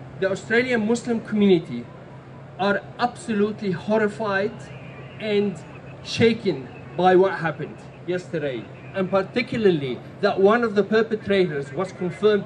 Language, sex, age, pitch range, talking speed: English, male, 40-59, 150-210 Hz, 105 wpm